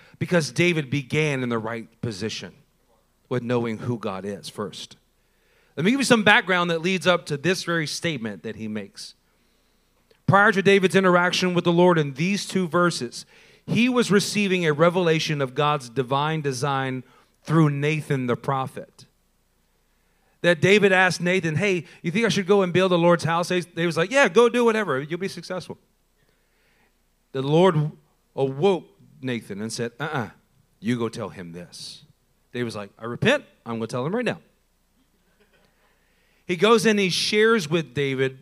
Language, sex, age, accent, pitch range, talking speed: English, male, 40-59, American, 130-185 Hz, 170 wpm